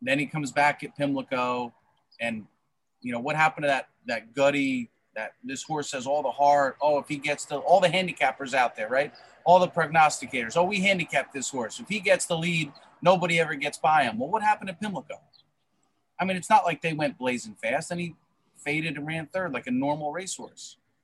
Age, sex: 30-49, male